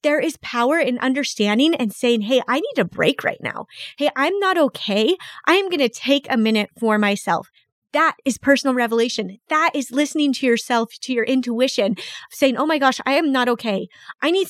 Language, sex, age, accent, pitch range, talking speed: English, female, 20-39, American, 220-270 Hz, 205 wpm